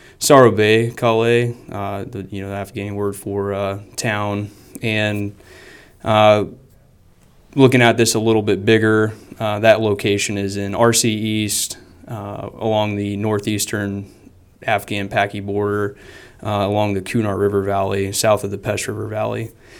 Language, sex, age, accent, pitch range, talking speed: English, male, 20-39, American, 100-115 Hz, 145 wpm